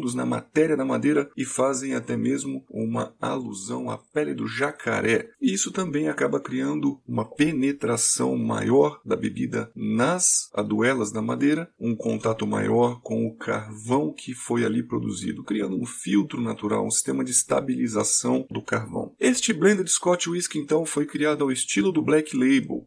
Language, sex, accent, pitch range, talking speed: Portuguese, male, Brazilian, 110-160 Hz, 155 wpm